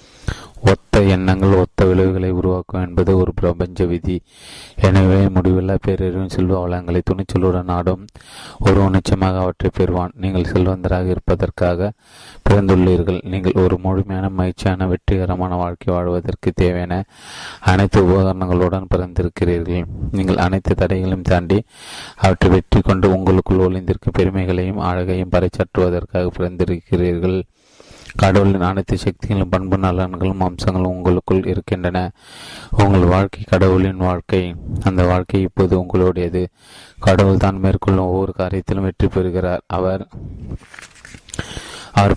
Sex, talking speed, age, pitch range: male, 100 wpm, 30-49, 90-95 Hz